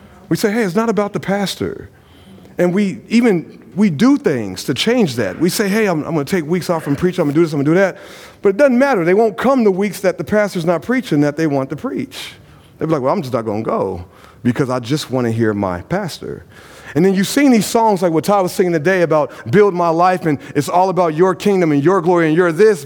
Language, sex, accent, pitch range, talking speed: English, male, American, 125-190 Hz, 275 wpm